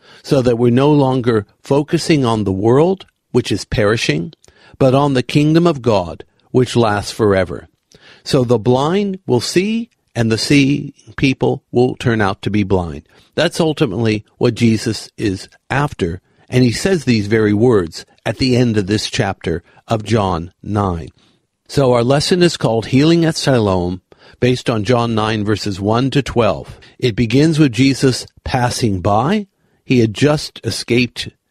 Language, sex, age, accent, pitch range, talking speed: English, male, 50-69, American, 110-145 Hz, 160 wpm